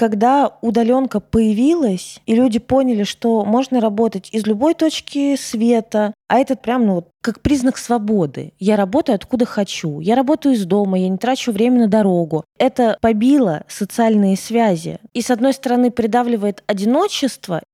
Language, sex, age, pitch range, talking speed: Russian, female, 20-39, 190-250 Hz, 150 wpm